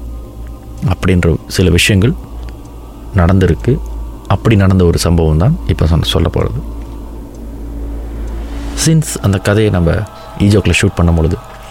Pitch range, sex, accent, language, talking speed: 85-110 Hz, male, native, Tamil, 100 wpm